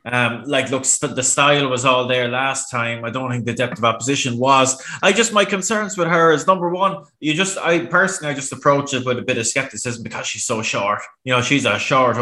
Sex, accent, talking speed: male, Irish, 245 wpm